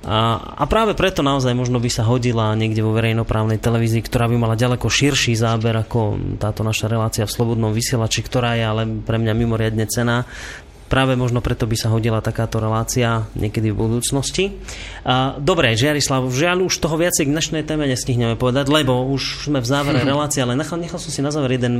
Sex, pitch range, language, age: male, 115-140 Hz, Slovak, 30-49